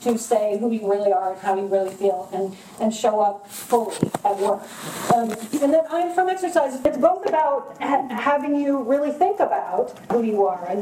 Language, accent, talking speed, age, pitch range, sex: English, American, 205 wpm, 40-59, 210-255 Hz, female